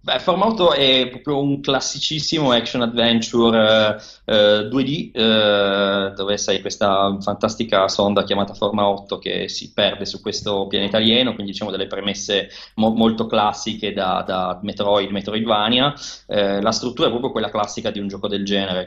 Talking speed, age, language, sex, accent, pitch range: 155 wpm, 20-39, Italian, male, native, 100-110 Hz